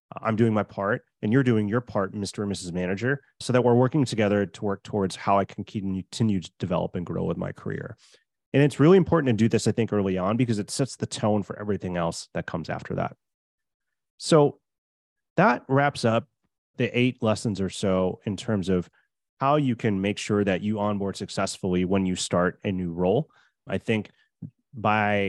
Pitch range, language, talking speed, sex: 95-120 Hz, English, 200 wpm, male